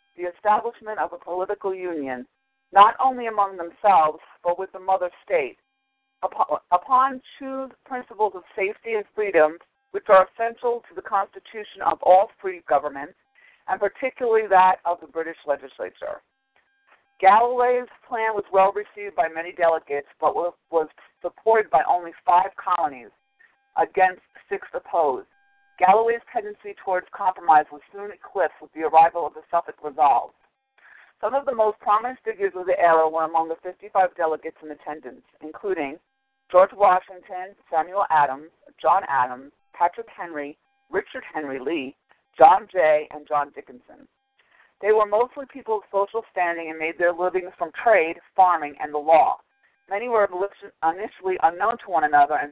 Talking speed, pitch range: 150 wpm, 165-255 Hz